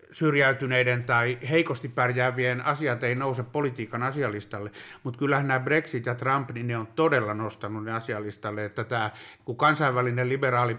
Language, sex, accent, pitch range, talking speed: Finnish, male, native, 120-140 Hz, 145 wpm